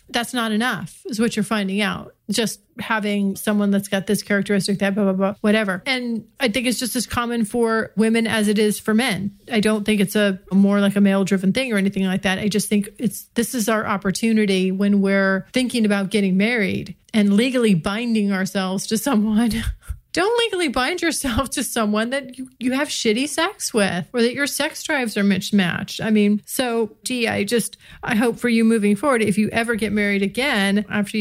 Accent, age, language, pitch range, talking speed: American, 40-59, English, 200-235 Hz, 210 wpm